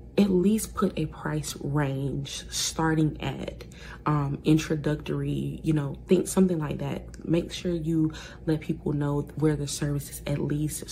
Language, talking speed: English, 150 wpm